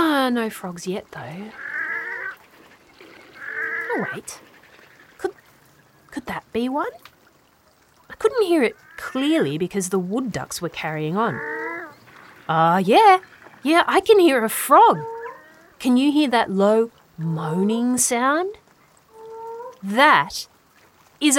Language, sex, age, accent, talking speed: English, female, 30-49, Australian, 120 wpm